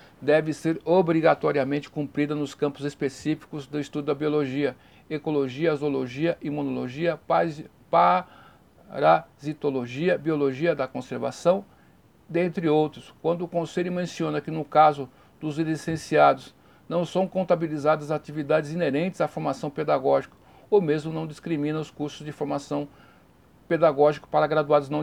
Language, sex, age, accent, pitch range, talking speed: Portuguese, male, 60-79, Brazilian, 140-165 Hz, 120 wpm